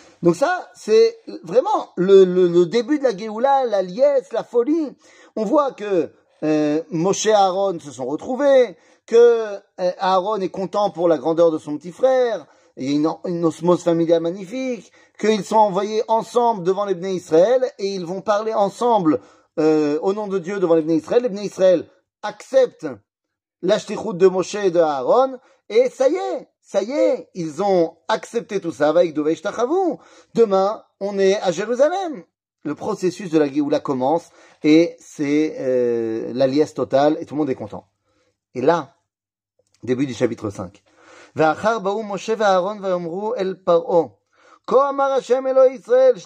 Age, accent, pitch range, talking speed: 40-59, French, 165-240 Hz, 150 wpm